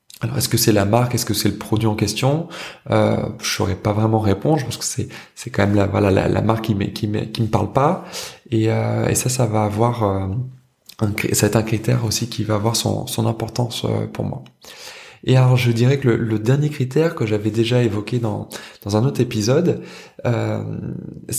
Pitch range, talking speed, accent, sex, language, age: 105-125 Hz, 225 wpm, French, male, French, 20-39